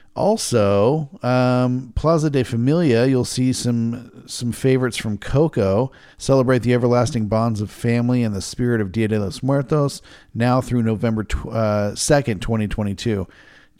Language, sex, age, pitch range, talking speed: English, male, 40-59, 105-135 Hz, 140 wpm